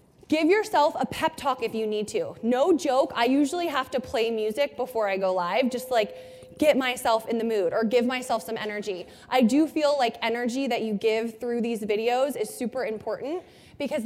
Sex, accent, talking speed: female, American, 205 wpm